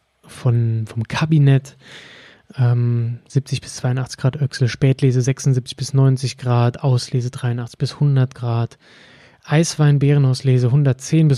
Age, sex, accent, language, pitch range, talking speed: 20-39, male, German, German, 115-140 Hz, 115 wpm